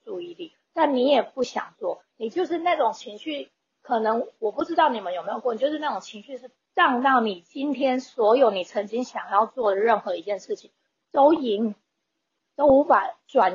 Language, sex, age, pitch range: Chinese, female, 20-39, 210-305 Hz